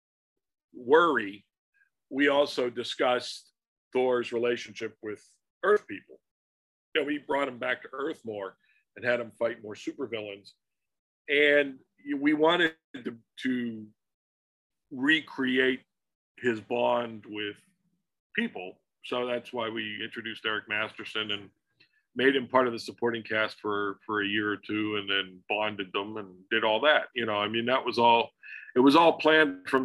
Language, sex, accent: English, male, American